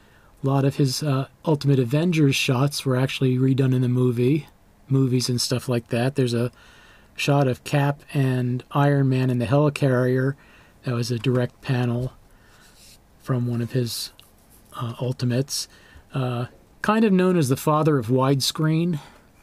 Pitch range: 120-145 Hz